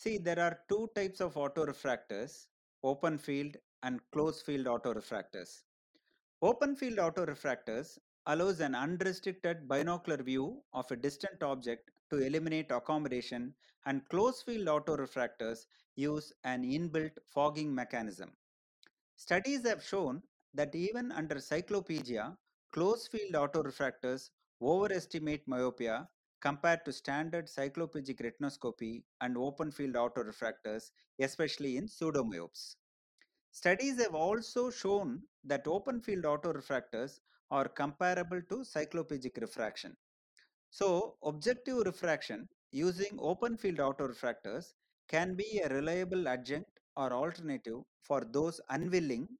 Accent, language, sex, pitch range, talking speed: Indian, English, male, 135-180 Hz, 110 wpm